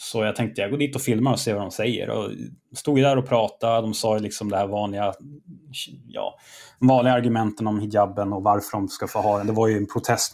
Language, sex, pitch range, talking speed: Swedish, male, 105-130 Hz, 250 wpm